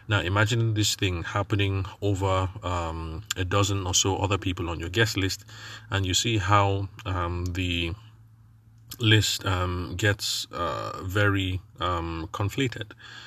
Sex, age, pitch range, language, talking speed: male, 30-49, 90-105 Hz, English, 135 wpm